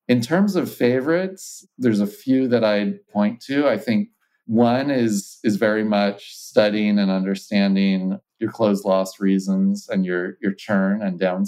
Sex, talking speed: male, 160 wpm